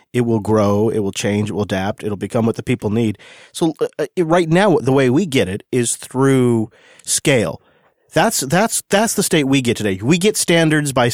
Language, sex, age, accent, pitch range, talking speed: English, male, 30-49, American, 110-150 Hz, 215 wpm